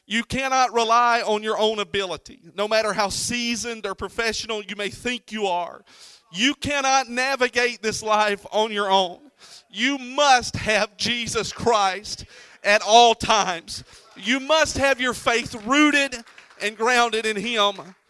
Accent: American